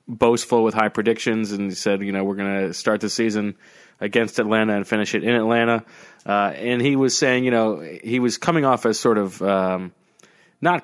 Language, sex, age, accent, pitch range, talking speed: English, male, 30-49, American, 110-150 Hz, 200 wpm